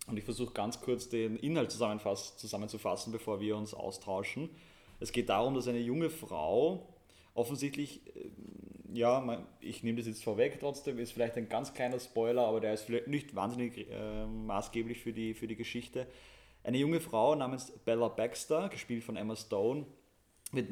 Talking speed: 160 wpm